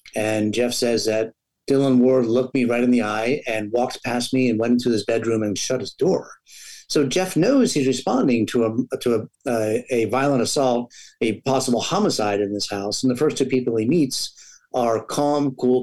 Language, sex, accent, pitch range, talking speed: English, male, American, 115-140 Hz, 205 wpm